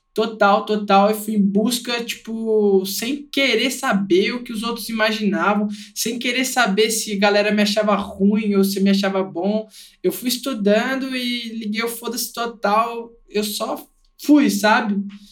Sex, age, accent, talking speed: male, 20-39, Brazilian, 160 wpm